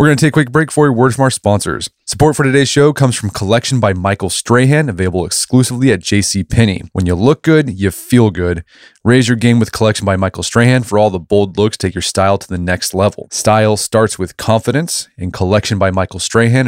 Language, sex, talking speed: English, male, 225 wpm